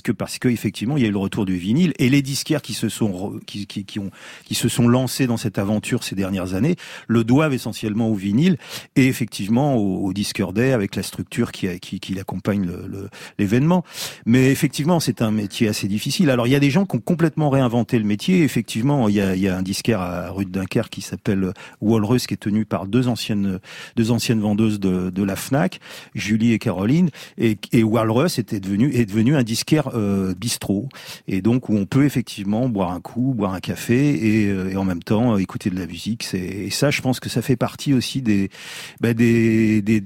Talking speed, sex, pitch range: 225 wpm, male, 100-125 Hz